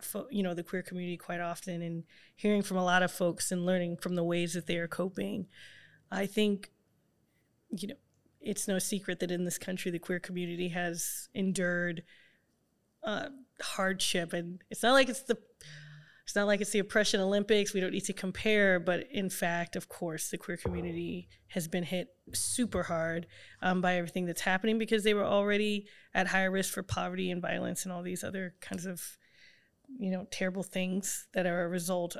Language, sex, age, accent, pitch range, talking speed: English, female, 20-39, American, 180-205 Hz, 190 wpm